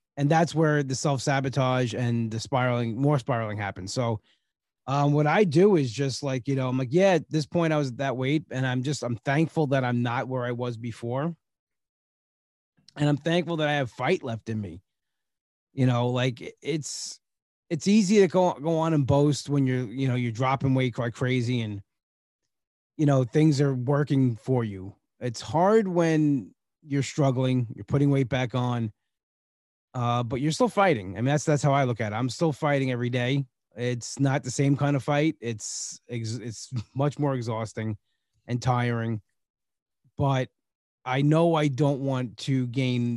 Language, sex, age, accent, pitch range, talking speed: English, male, 30-49, American, 120-145 Hz, 185 wpm